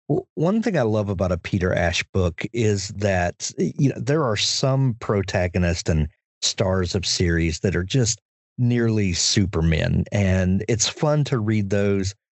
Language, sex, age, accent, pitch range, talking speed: English, male, 40-59, American, 95-120 Hz, 155 wpm